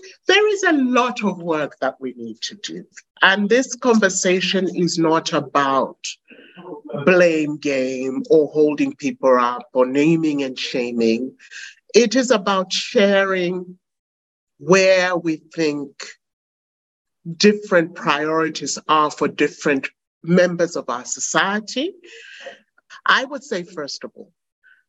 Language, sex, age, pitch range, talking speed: English, male, 50-69, 150-210 Hz, 120 wpm